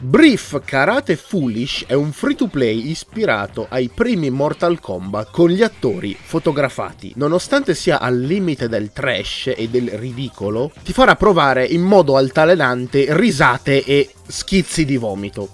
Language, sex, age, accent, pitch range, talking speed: Italian, male, 20-39, native, 120-185 Hz, 135 wpm